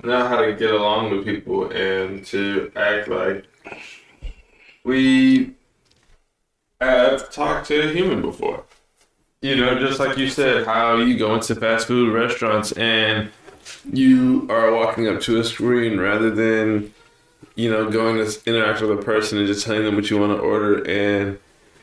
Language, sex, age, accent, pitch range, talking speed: English, male, 20-39, American, 105-115 Hz, 160 wpm